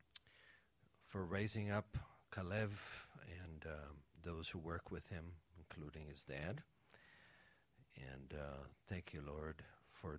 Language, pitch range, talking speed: English, 90-110 Hz, 120 wpm